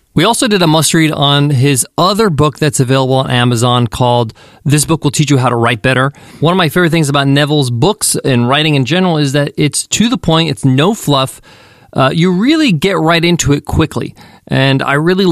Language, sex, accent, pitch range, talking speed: English, male, American, 125-160 Hz, 220 wpm